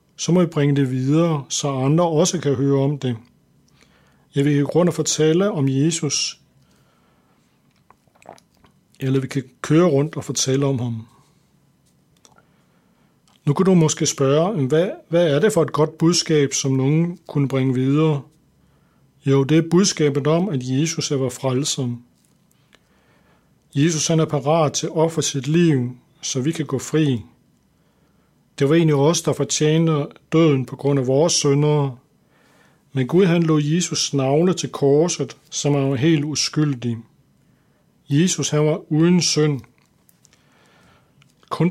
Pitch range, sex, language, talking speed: 135-160 Hz, male, Danish, 140 wpm